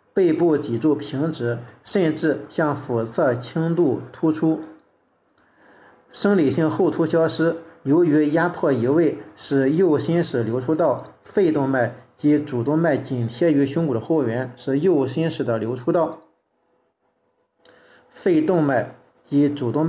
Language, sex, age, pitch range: Chinese, male, 50-69, 135-160 Hz